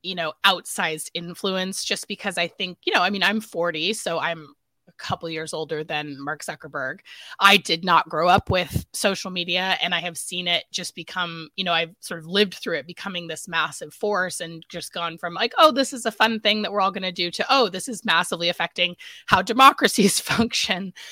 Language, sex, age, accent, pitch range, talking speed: English, female, 20-39, American, 175-220 Hz, 215 wpm